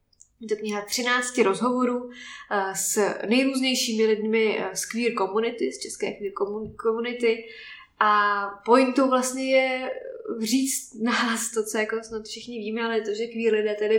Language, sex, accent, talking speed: Czech, female, native, 140 wpm